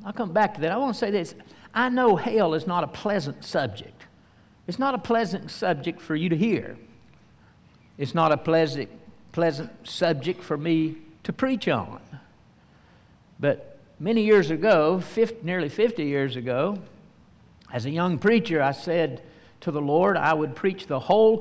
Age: 60-79